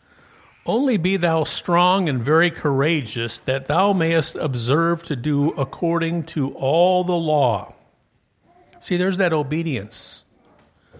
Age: 50-69